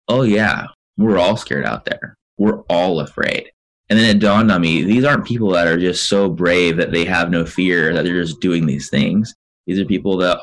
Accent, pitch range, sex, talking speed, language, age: American, 85-105 Hz, male, 225 wpm, English, 20-39